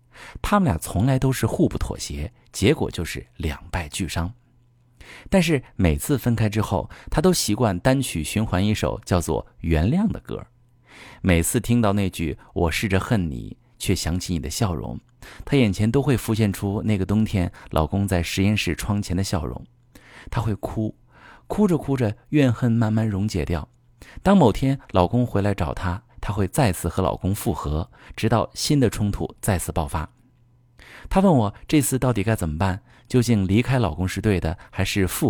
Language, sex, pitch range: Chinese, male, 90-125 Hz